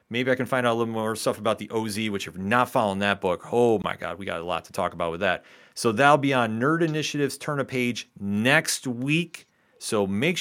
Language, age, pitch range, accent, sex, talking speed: English, 40-59, 110-150 Hz, American, male, 250 wpm